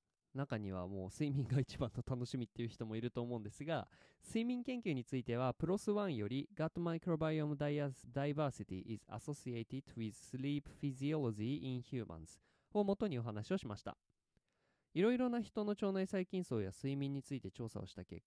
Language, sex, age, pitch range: Japanese, male, 20-39, 115-185 Hz